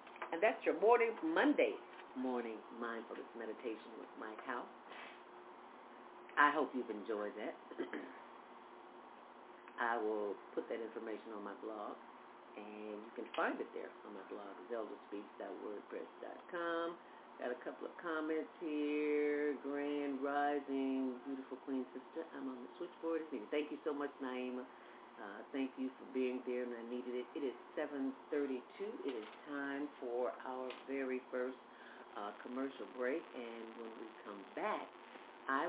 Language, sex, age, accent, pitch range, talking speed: English, female, 40-59, American, 120-145 Hz, 140 wpm